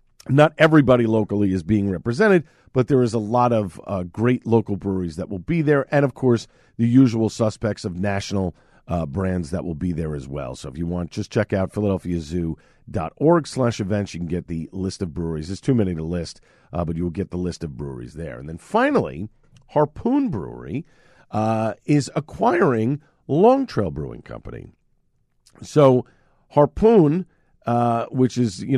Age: 50-69